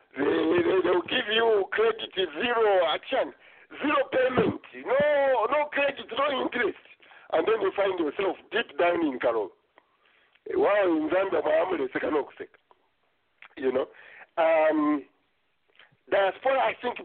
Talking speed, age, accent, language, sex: 125 wpm, 50-69, French, English, male